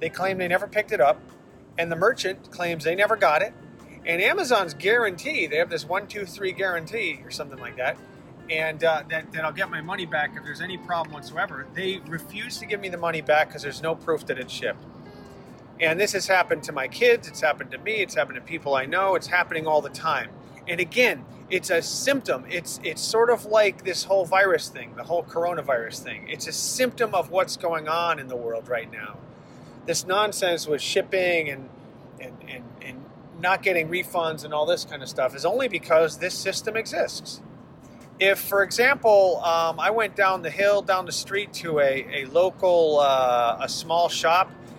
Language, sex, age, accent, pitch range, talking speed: English, male, 40-59, American, 140-190 Hz, 205 wpm